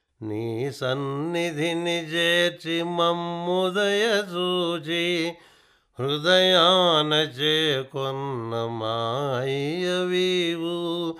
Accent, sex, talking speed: native, male, 55 wpm